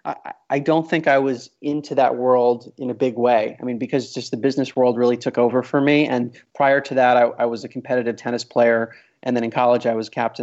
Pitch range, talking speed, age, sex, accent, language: 125-150 Hz, 240 wpm, 30-49, male, American, English